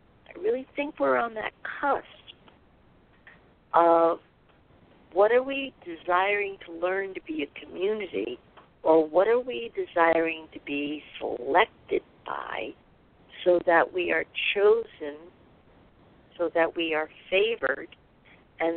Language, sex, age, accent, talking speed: English, female, 50-69, American, 120 wpm